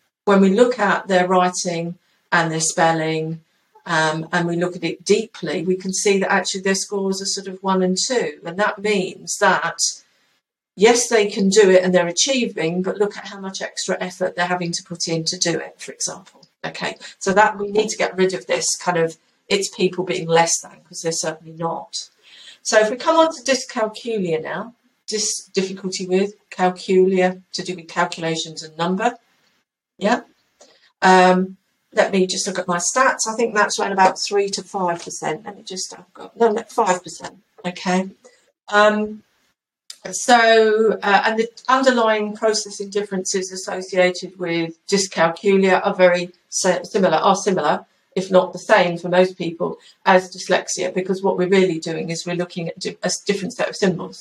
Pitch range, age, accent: 175-210 Hz, 50-69, British